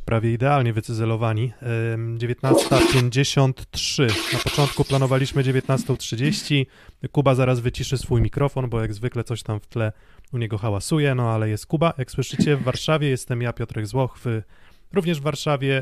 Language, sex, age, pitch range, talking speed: Polish, male, 20-39, 115-140 Hz, 145 wpm